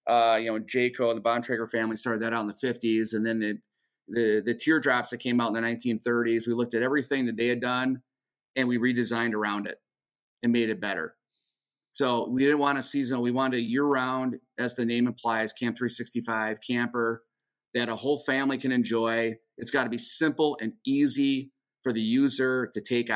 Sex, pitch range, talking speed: male, 115-130 Hz, 200 wpm